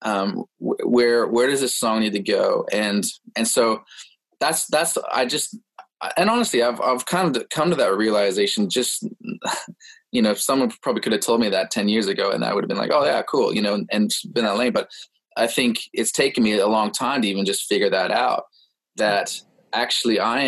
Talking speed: 215 wpm